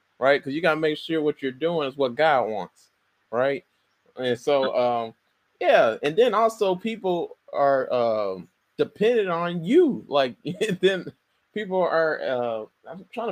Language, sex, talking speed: English, male, 160 wpm